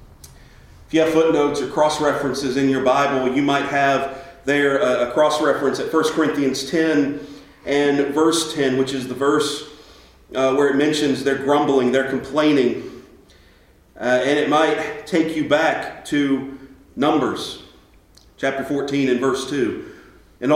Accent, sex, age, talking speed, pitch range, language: American, male, 40-59, 145 wpm, 135-175 Hz, English